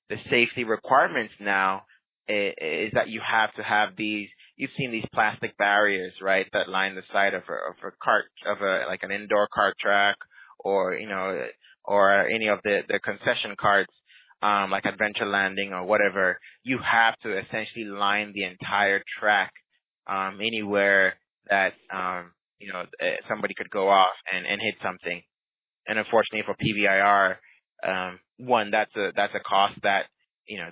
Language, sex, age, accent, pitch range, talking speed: English, male, 20-39, American, 95-110 Hz, 165 wpm